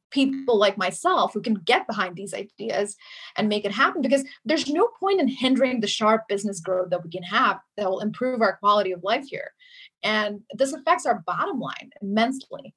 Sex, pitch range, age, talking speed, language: female, 200-250 Hz, 30-49, 195 wpm, English